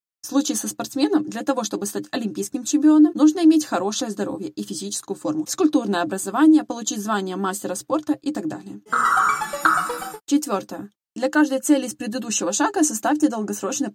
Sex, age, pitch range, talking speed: female, 20-39, 210-300 Hz, 150 wpm